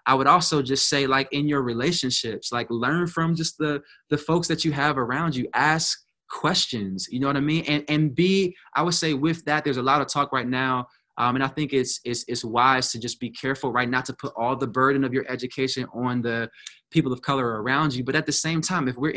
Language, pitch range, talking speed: English, 125-155 Hz, 245 wpm